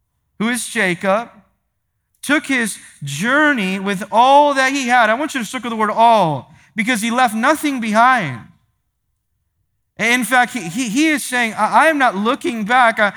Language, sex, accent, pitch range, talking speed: English, male, American, 195-250 Hz, 165 wpm